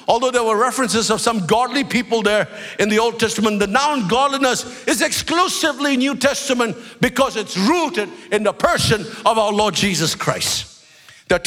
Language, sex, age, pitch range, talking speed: English, male, 50-69, 210-245 Hz, 175 wpm